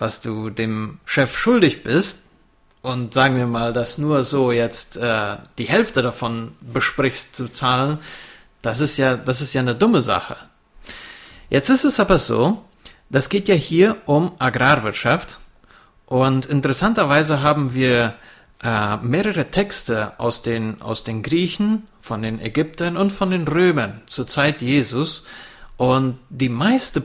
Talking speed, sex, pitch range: 140 wpm, male, 115-150 Hz